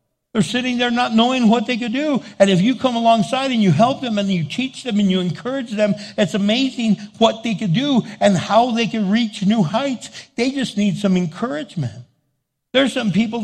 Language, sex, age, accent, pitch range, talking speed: English, male, 60-79, American, 160-215 Hz, 210 wpm